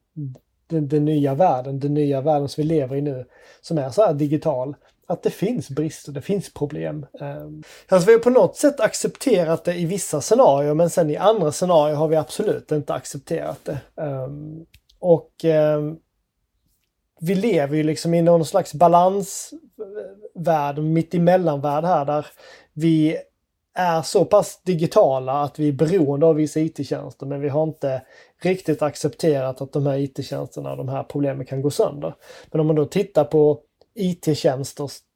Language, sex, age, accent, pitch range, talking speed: Swedish, male, 30-49, native, 140-170 Hz, 160 wpm